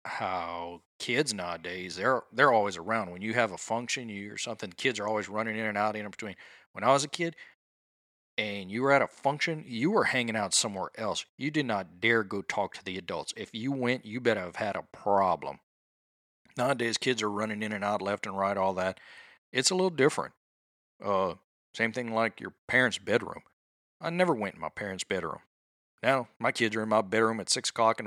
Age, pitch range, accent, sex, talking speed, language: 40-59, 95-125 Hz, American, male, 215 wpm, English